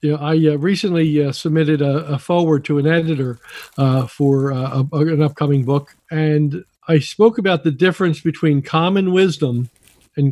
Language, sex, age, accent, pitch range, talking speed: English, male, 50-69, American, 140-170 Hz, 175 wpm